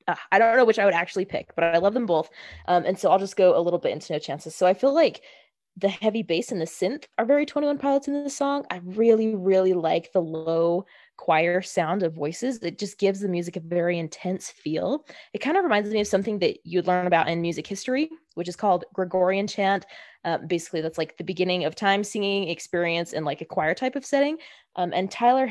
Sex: female